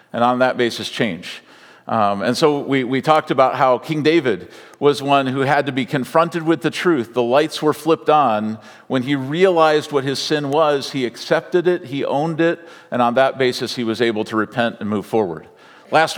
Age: 50-69